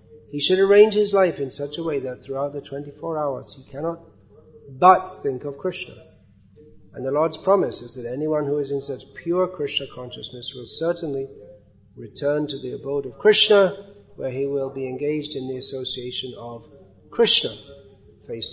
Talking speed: 170 wpm